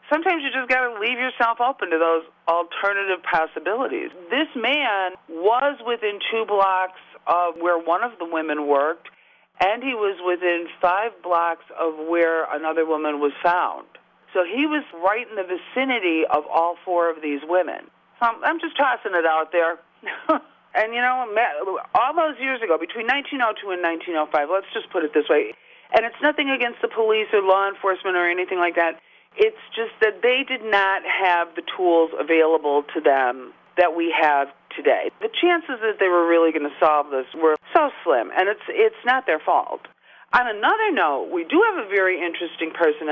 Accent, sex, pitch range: American, female, 165-260 Hz